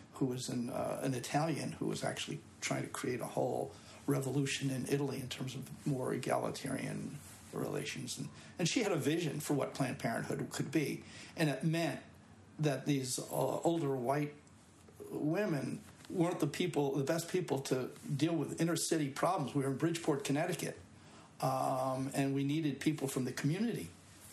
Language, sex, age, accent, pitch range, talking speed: English, male, 60-79, American, 130-155 Hz, 165 wpm